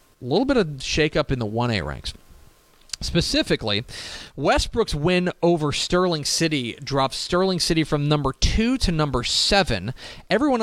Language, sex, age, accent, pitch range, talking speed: English, male, 40-59, American, 125-180 Hz, 140 wpm